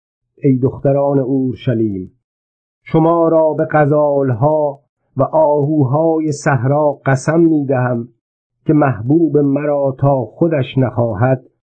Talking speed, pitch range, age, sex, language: 90 wpm, 120-150 Hz, 50-69, male, Persian